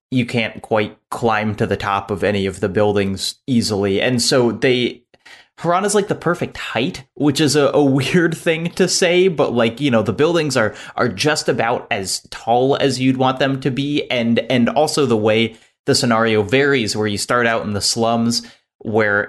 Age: 20-39